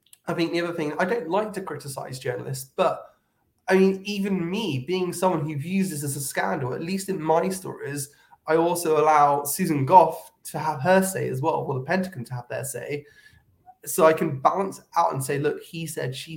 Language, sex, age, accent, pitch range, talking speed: English, male, 20-39, British, 130-165 Hz, 215 wpm